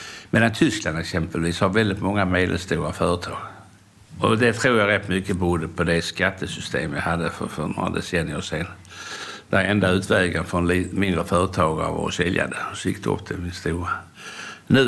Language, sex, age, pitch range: Swedish, male, 60-79, 85-100 Hz